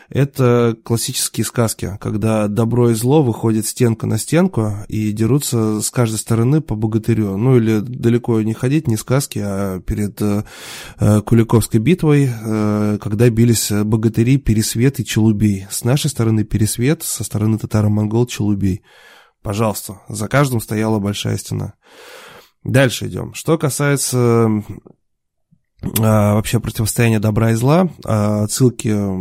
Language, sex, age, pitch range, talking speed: Russian, male, 20-39, 105-125 Hz, 120 wpm